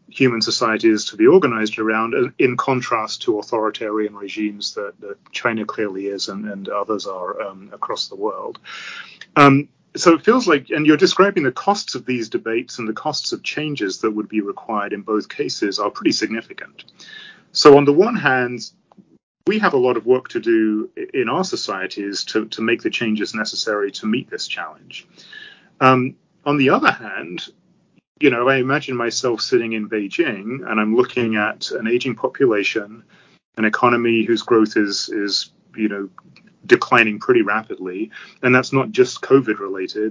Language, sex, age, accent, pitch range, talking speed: English, male, 30-49, British, 110-145 Hz, 170 wpm